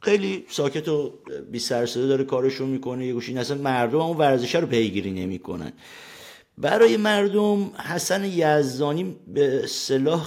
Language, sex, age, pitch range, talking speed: Persian, male, 50-69, 100-140 Hz, 140 wpm